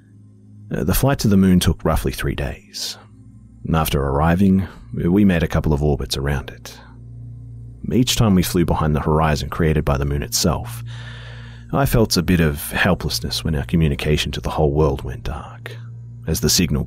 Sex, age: male, 30-49